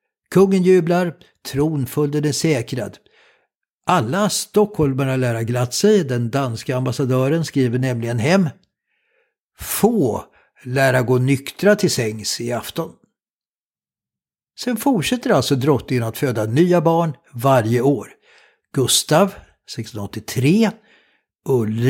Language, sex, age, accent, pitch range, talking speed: Swedish, male, 60-79, native, 120-170 Hz, 100 wpm